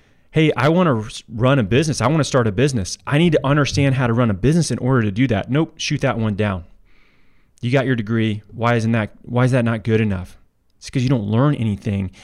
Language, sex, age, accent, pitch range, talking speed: English, male, 30-49, American, 105-125 Hz, 240 wpm